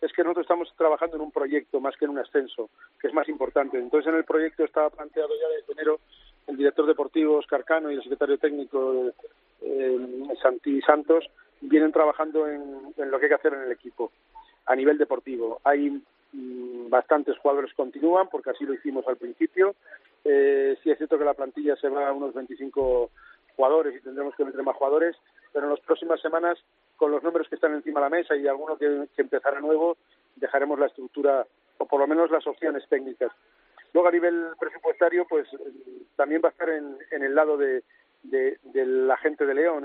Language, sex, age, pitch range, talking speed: Spanish, male, 40-59, 140-175 Hz, 200 wpm